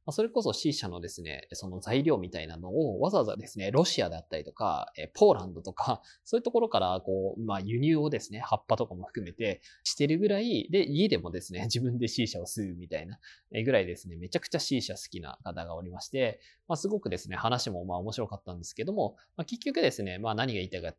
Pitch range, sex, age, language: 95-150 Hz, male, 20-39, Japanese